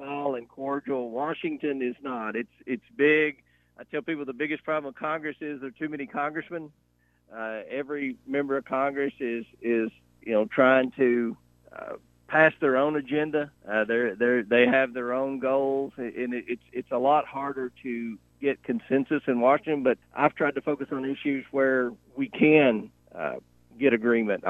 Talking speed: 175 wpm